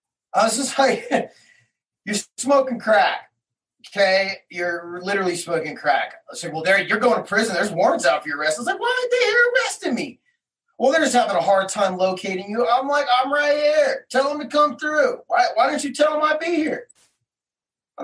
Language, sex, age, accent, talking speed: English, male, 30-49, American, 215 wpm